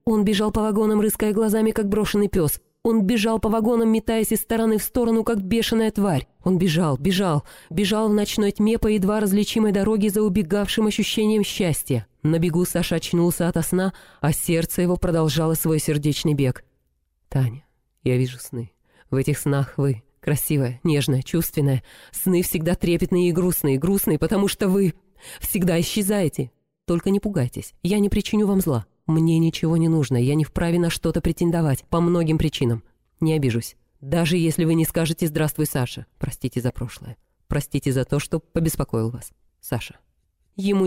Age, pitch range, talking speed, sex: 30-49, 145-190 Hz, 165 wpm, female